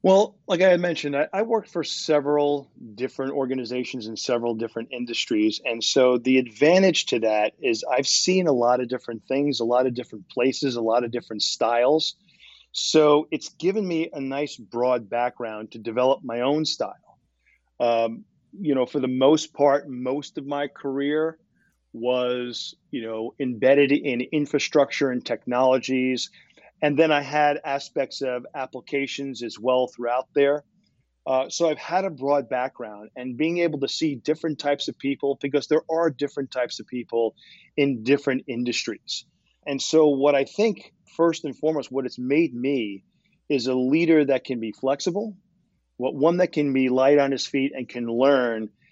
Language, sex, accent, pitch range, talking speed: English, male, American, 125-155 Hz, 170 wpm